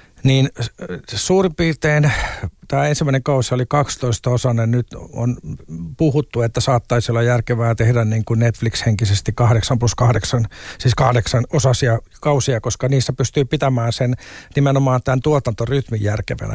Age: 50-69